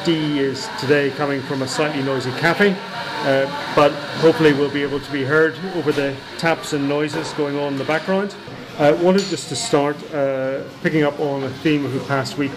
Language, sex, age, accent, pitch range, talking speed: English, male, 30-49, British, 135-155 Hz, 205 wpm